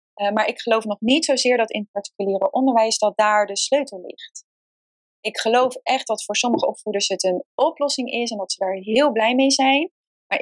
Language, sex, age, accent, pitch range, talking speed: Dutch, female, 20-39, Dutch, 195-275 Hz, 215 wpm